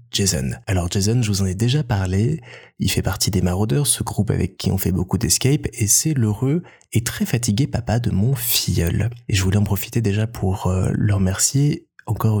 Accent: French